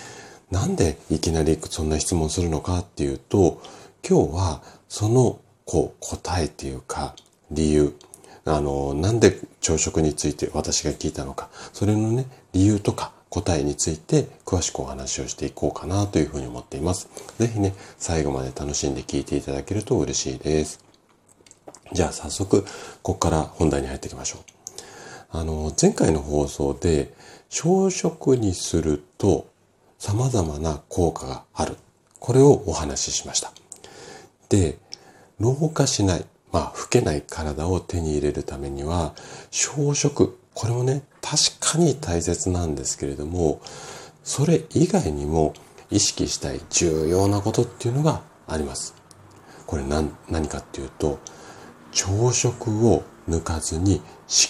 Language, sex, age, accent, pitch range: Japanese, male, 40-59, native, 75-100 Hz